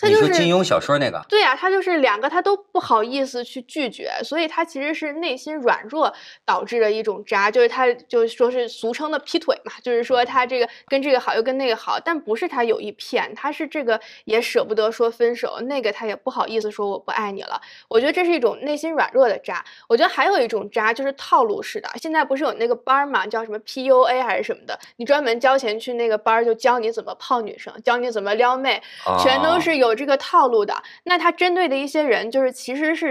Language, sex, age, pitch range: Chinese, female, 20-39, 225-310 Hz